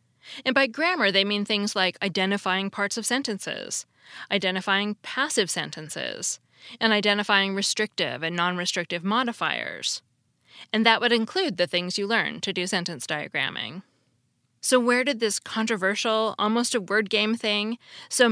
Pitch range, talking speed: 185-235 Hz, 130 wpm